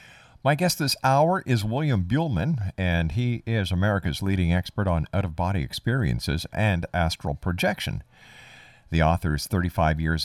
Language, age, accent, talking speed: English, 50-69, American, 135 wpm